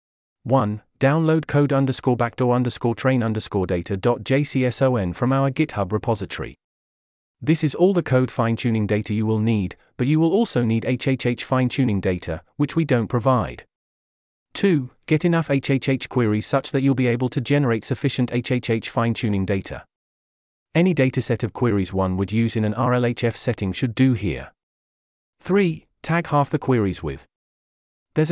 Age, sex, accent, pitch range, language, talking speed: 30-49, male, British, 105-140 Hz, English, 155 wpm